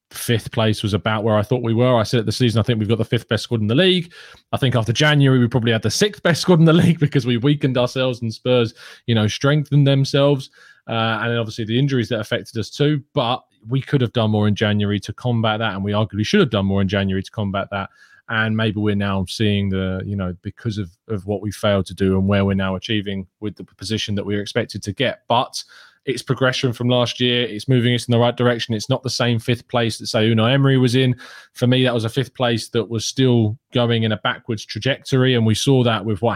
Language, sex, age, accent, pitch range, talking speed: English, male, 20-39, British, 105-130 Hz, 255 wpm